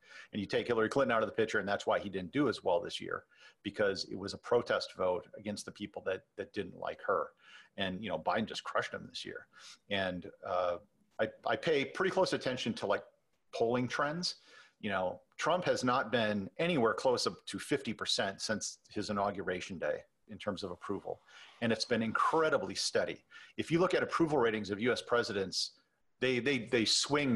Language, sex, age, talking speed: English, male, 40-59, 200 wpm